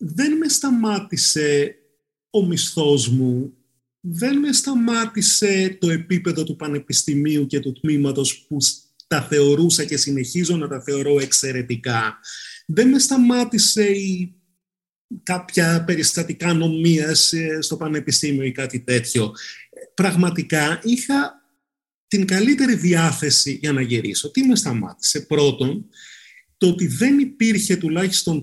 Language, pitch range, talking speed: Greek, 140-195 Hz, 115 wpm